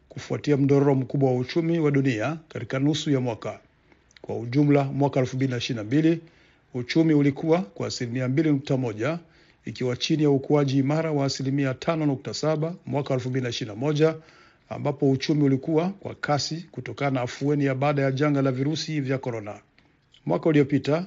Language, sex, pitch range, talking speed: Swahili, male, 130-155 Hz, 130 wpm